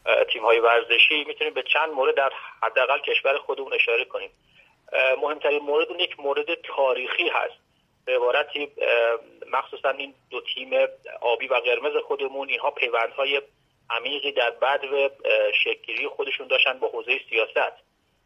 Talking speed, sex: 130 wpm, male